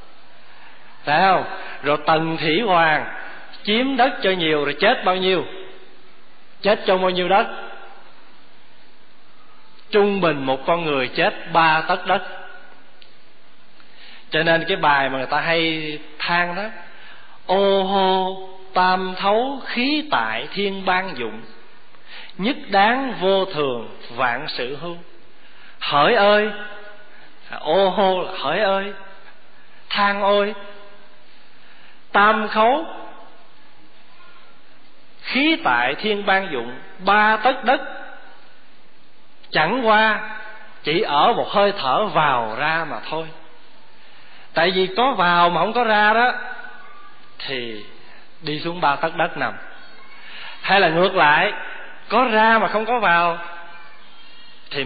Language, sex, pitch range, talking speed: Vietnamese, male, 165-210 Hz, 120 wpm